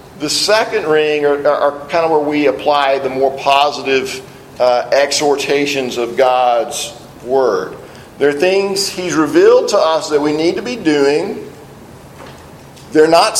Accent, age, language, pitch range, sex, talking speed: American, 40-59, English, 140-170 Hz, male, 150 wpm